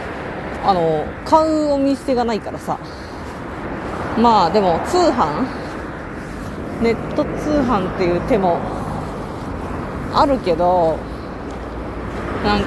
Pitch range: 165-240 Hz